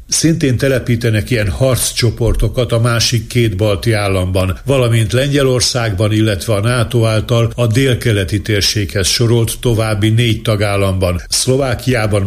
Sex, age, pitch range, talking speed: male, 60-79, 105-125 Hz, 115 wpm